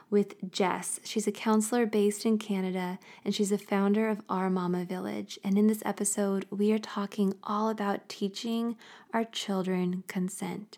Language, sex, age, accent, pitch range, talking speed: English, female, 20-39, American, 190-220 Hz, 160 wpm